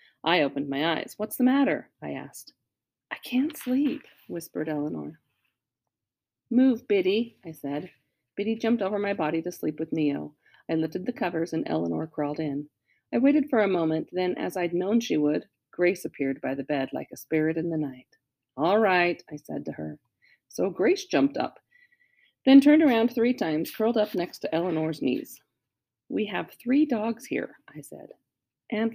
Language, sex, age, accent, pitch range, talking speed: English, female, 40-59, American, 145-220 Hz, 180 wpm